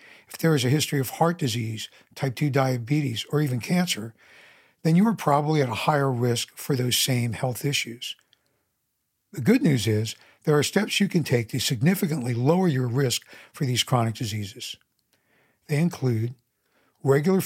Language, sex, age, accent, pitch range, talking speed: English, male, 60-79, American, 120-165 Hz, 170 wpm